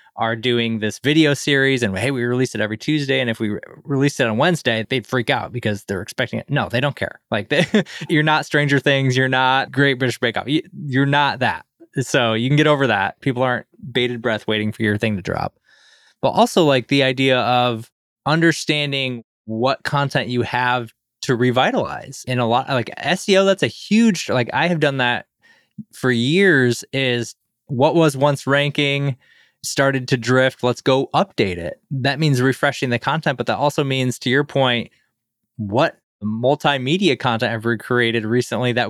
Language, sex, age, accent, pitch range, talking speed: English, male, 20-39, American, 115-145 Hz, 190 wpm